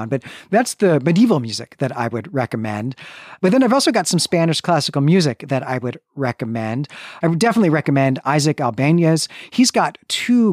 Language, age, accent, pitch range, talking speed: English, 40-59, American, 130-170 Hz, 175 wpm